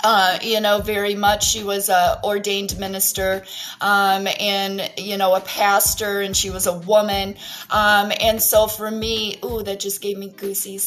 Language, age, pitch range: English, 30-49, 195-220 Hz